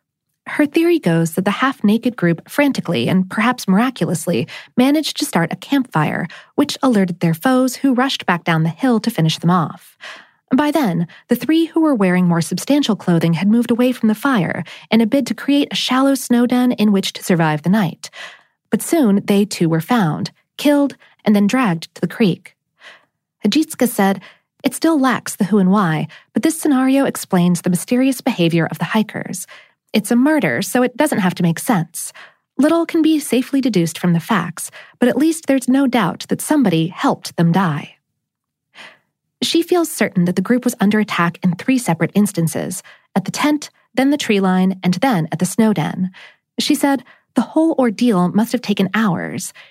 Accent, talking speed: American, 190 wpm